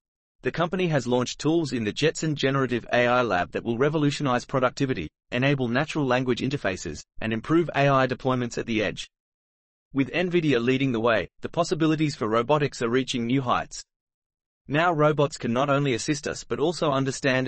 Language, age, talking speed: English, 30-49, 170 wpm